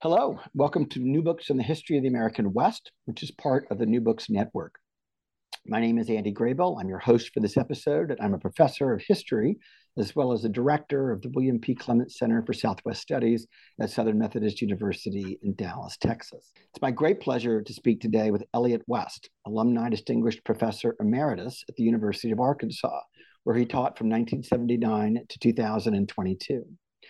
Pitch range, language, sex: 110-130 Hz, English, male